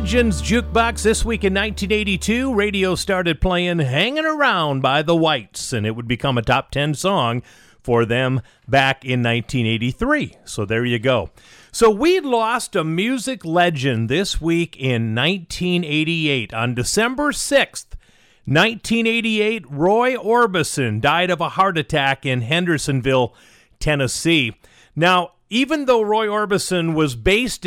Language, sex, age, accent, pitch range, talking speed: English, male, 40-59, American, 135-185 Hz, 130 wpm